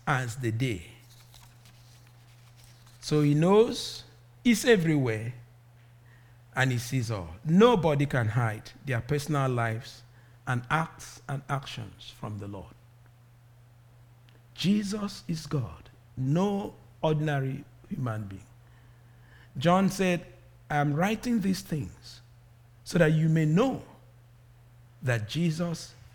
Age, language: 50-69, English